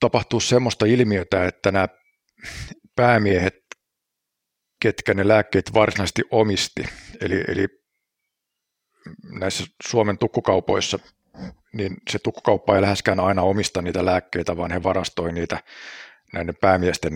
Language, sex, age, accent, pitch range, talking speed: Finnish, male, 50-69, native, 90-105 Hz, 110 wpm